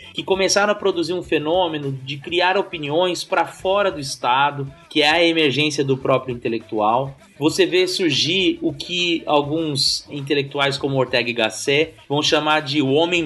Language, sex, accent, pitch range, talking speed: Portuguese, male, Brazilian, 140-185 Hz, 160 wpm